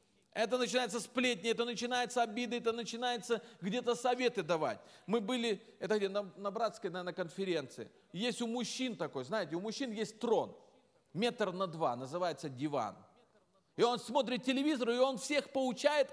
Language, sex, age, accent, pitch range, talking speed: Russian, male, 40-59, native, 210-245 Hz, 155 wpm